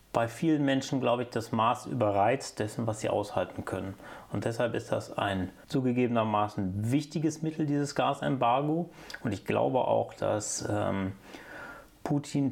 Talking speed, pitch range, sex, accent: 145 wpm, 105-135 Hz, male, German